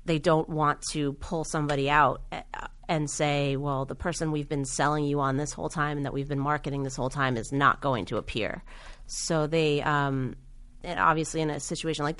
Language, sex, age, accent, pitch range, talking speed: English, female, 30-49, American, 145-170 Hz, 205 wpm